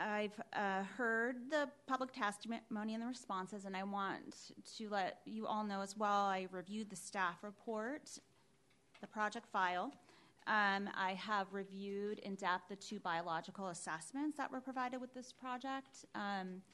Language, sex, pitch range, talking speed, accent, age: English, female, 180-215 Hz, 160 wpm, American, 30-49